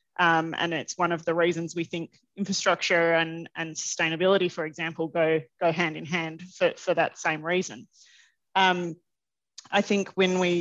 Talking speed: 170 wpm